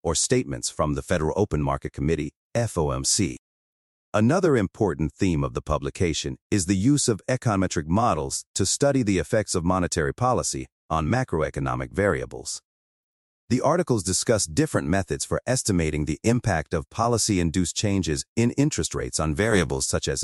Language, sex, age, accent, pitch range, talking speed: English, male, 40-59, American, 75-110 Hz, 150 wpm